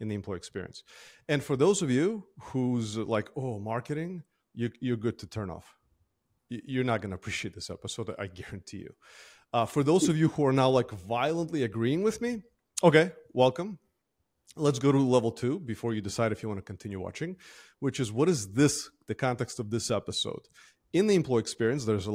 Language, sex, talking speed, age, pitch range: English, male, 200 wpm, 30-49, 105-135 Hz